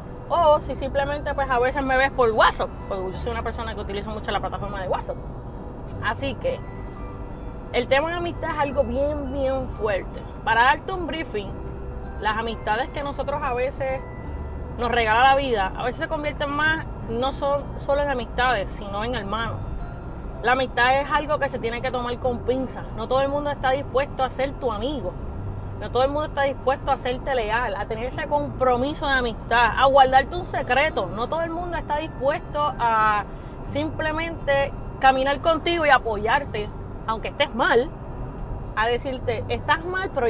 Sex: female